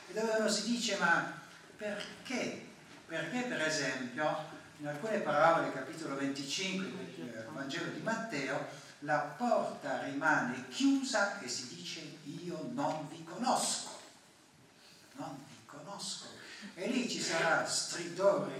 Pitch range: 140-200 Hz